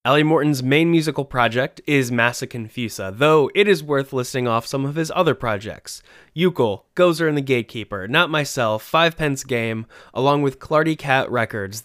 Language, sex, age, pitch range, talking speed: English, male, 20-39, 115-145 Hz, 170 wpm